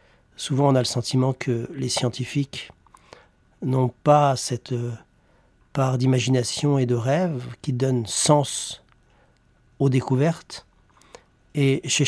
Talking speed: 115 wpm